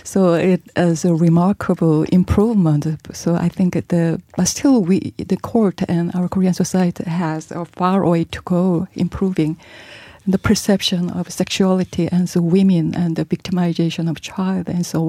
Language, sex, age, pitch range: Korean, female, 40-59, 160-190 Hz